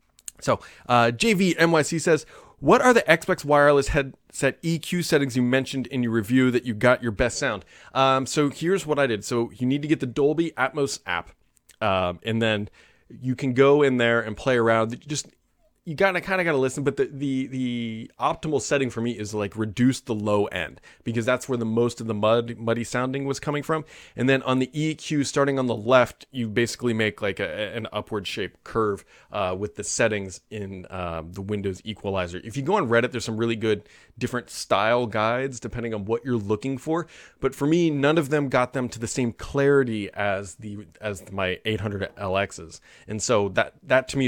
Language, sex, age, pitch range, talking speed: English, male, 30-49, 110-140 Hz, 210 wpm